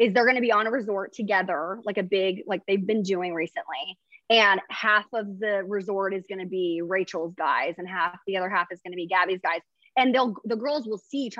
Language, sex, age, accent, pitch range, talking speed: English, female, 20-39, American, 195-245 Hz, 240 wpm